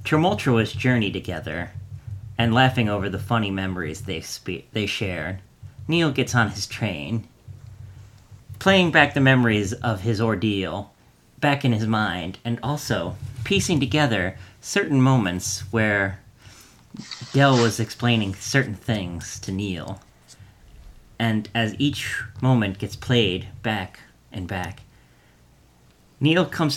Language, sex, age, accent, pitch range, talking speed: English, male, 40-59, American, 100-120 Hz, 120 wpm